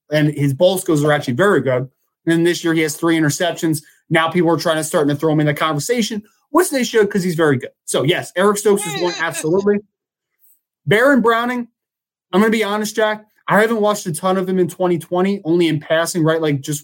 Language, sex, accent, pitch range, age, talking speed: English, male, American, 160-195 Hz, 20-39, 230 wpm